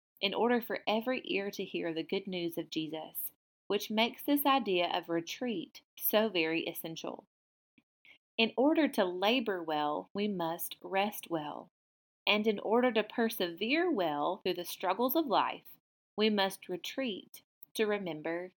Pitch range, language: 170-230 Hz, English